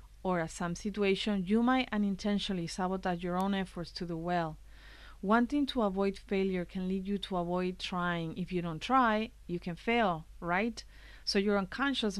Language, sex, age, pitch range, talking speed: English, female, 40-59, 175-205 Hz, 170 wpm